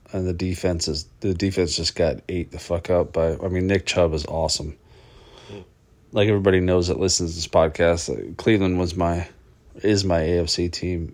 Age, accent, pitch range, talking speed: 30-49, American, 85-100 Hz, 185 wpm